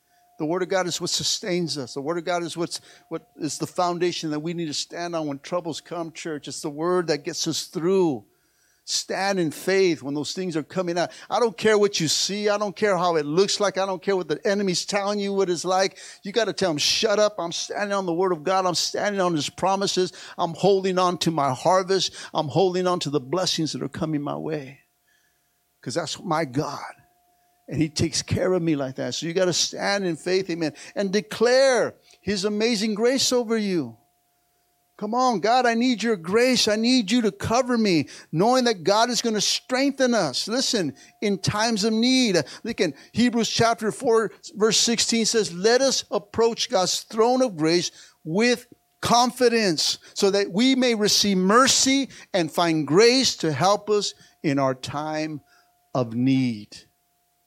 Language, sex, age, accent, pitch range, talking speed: English, male, 50-69, American, 165-225 Hz, 200 wpm